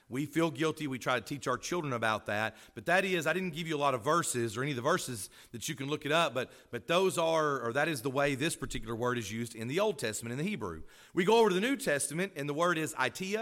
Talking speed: 295 wpm